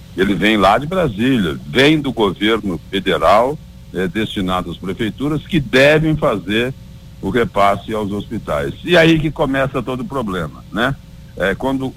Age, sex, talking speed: 60-79, male, 150 wpm